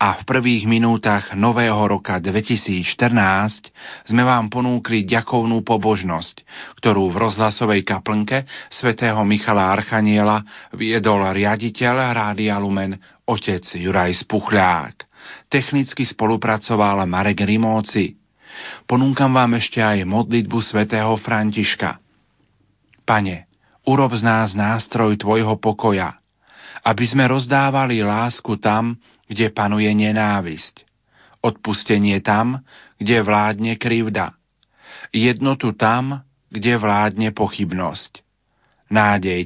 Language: Slovak